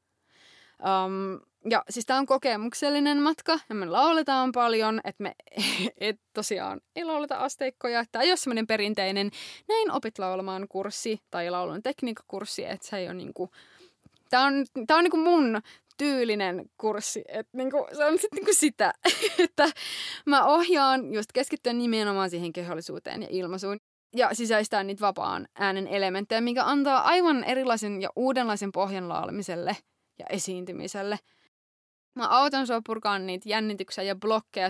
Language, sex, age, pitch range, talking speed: Finnish, female, 20-39, 185-260 Hz, 145 wpm